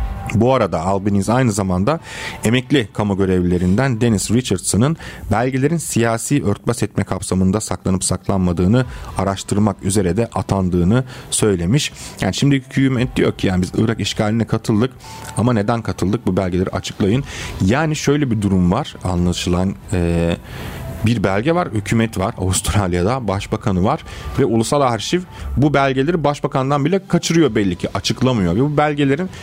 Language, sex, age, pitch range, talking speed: Turkish, male, 40-59, 95-125 Hz, 140 wpm